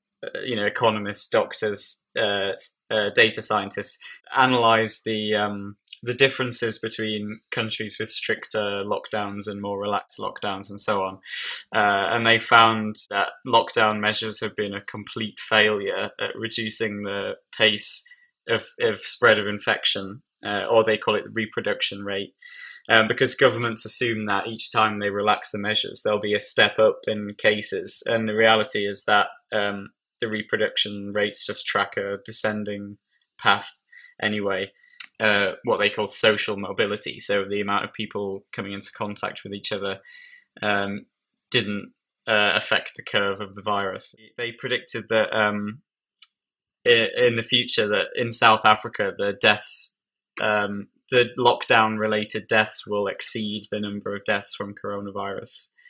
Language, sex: English, male